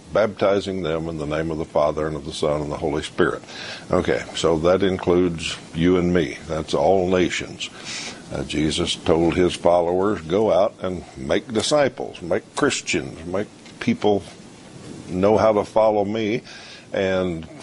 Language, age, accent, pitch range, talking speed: English, 60-79, American, 80-100 Hz, 155 wpm